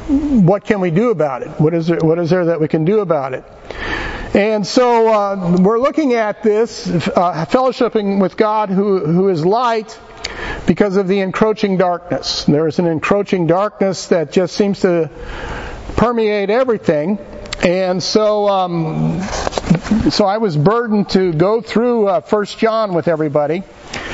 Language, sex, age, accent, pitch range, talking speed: English, male, 50-69, American, 180-225 Hz, 160 wpm